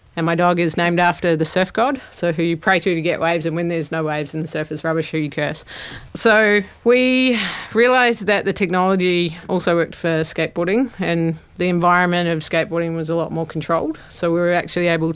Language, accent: English, Australian